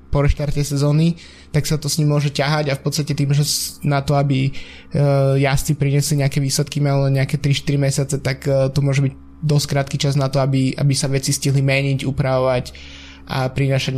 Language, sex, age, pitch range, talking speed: Slovak, male, 20-39, 135-145 Hz, 190 wpm